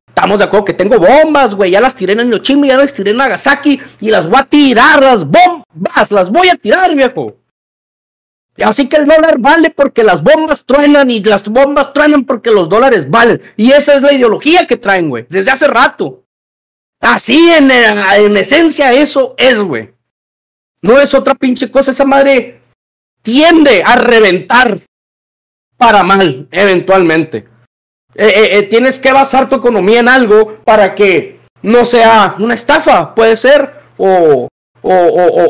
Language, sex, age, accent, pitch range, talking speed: Spanish, male, 40-59, Mexican, 195-275 Hz, 165 wpm